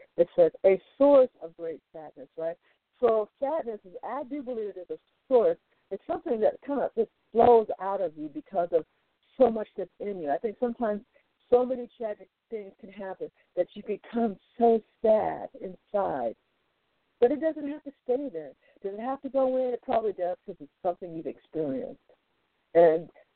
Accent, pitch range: American, 190-250 Hz